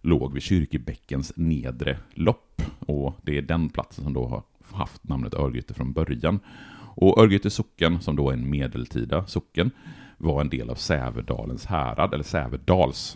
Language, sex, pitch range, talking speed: Swedish, male, 65-85 Hz, 155 wpm